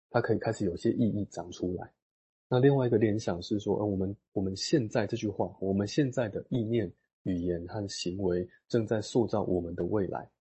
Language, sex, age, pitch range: Chinese, male, 20-39, 90-110 Hz